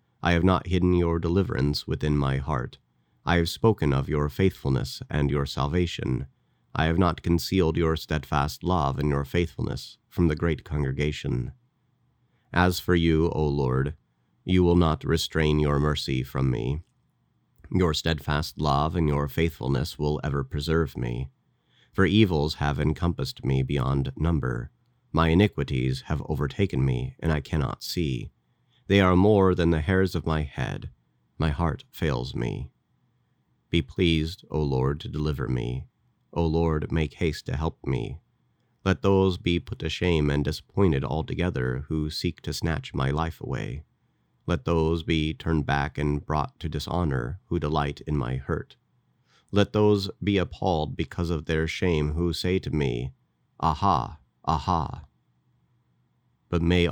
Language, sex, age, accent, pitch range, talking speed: English, male, 30-49, American, 70-85 Hz, 150 wpm